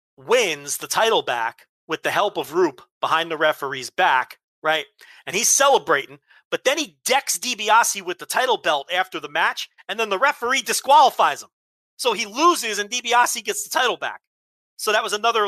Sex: male